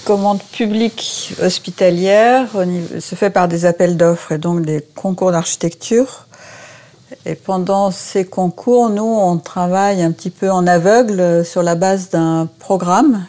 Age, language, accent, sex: 50-69, French, French, female